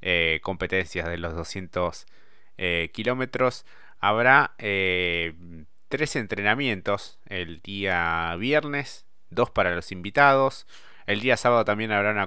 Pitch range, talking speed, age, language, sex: 90-115 Hz, 115 wpm, 20-39, Spanish, male